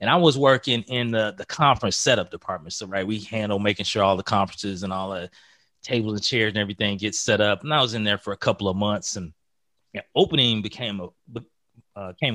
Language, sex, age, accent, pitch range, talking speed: English, male, 30-49, American, 105-125 Hz, 210 wpm